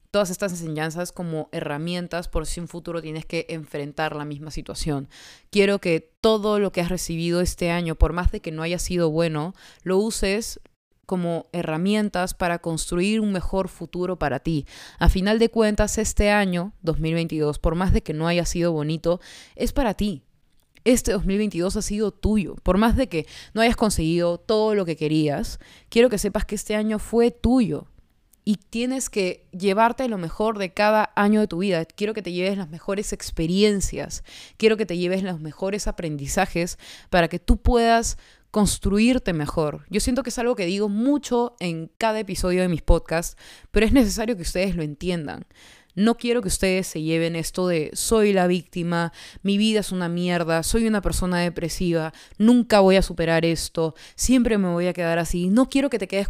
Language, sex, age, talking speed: Spanish, female, 20-39, 185 wpm